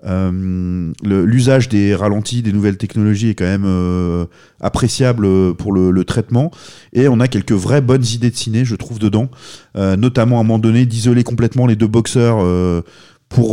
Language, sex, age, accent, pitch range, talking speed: French, male, 30-49, French, 95-120 Hz, 185 wpm